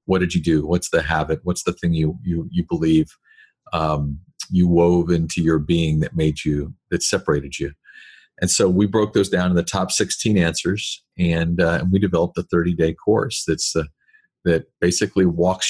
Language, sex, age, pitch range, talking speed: English, male, 40-59, 85-95 Hz, 195 wpm